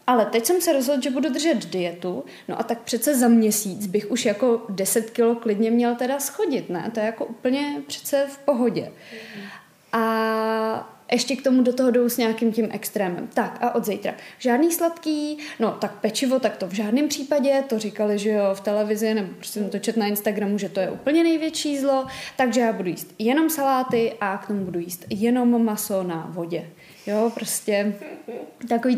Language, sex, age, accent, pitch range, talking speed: Czech, female, 20-39, native, 215-255 Hz, 195 wpm